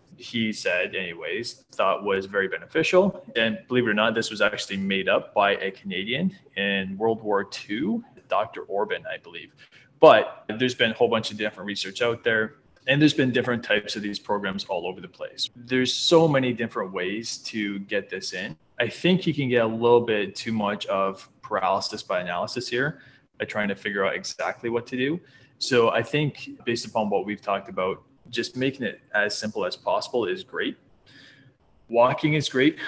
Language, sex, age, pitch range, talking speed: English, male, 20-39, 105-130 Hz, 190 wpm